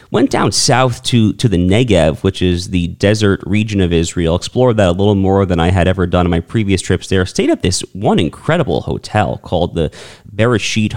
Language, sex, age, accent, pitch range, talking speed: English, male, 30-49, American, 90-115 Hz, 210 wpm